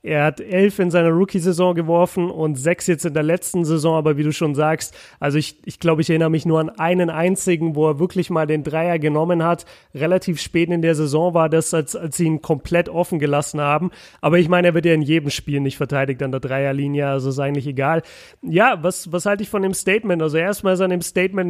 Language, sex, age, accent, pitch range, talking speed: German, male, 30-49, German, 160-185 Hz, 235 wpm